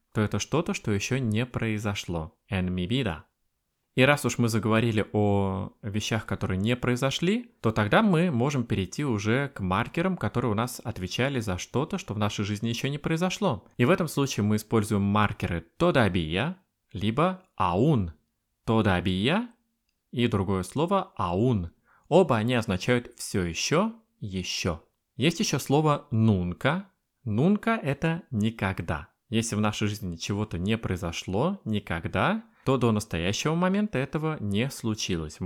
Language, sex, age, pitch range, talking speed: Russian, male, 20-39, 100-150 Hz, 140 wpm